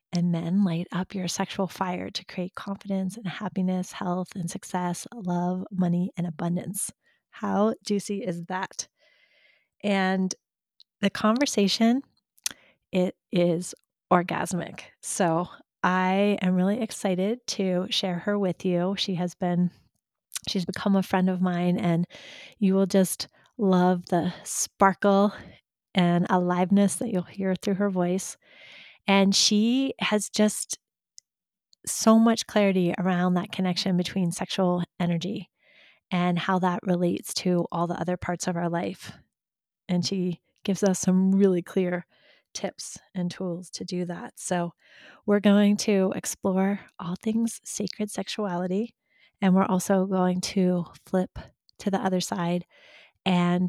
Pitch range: 180-200 Hz